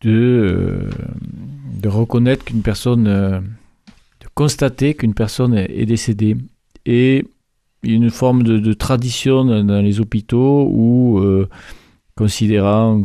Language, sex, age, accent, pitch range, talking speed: French, male, 40-59, French, 105-125 Hz, 135 wpm